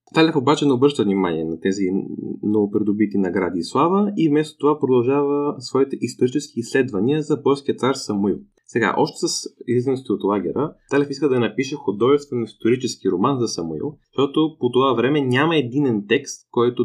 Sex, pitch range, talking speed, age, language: male, 110-145 Hz, 160 wpm, 20-39, Bulgarian